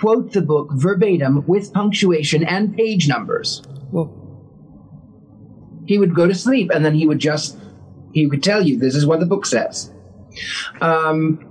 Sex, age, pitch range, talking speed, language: male, 40-59, 155-195 Hz, 160 wpm, English